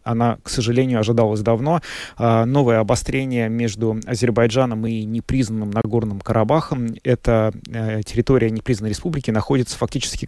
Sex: male